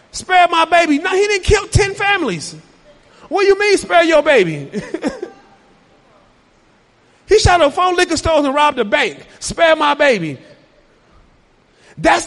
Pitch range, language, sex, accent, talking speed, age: 235-355 Hz, English, male, American, 145 wpm, 30-49